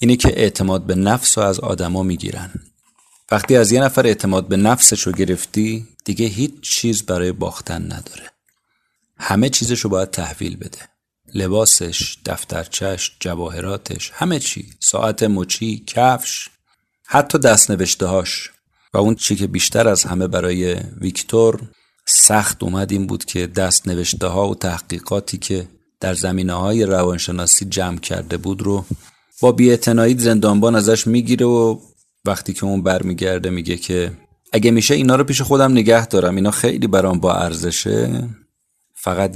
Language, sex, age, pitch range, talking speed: Persian, male, 40-59, 90-110 Hz, 135 wpm